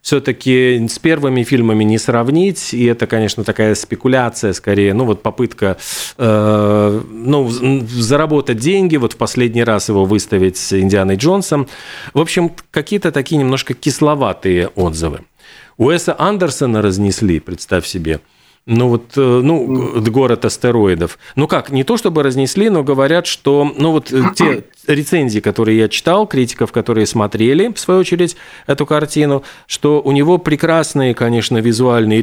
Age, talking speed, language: 40-59, 140 wpm, Russian